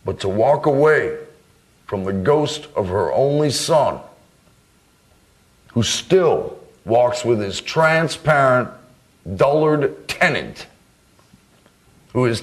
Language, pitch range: English, 135-175 Hz